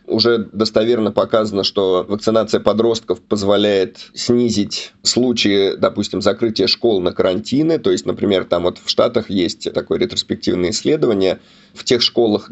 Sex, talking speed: male, 135 wpm